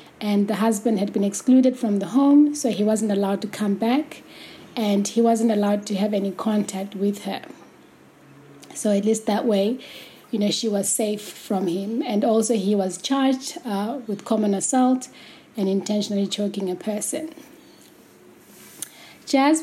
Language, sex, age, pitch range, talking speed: English, female, 20-39, 200-235 Hz, 160 wpm